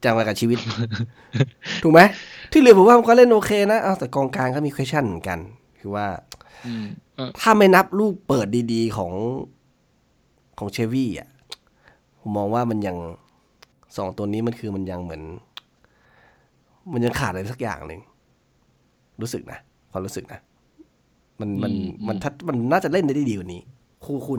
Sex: male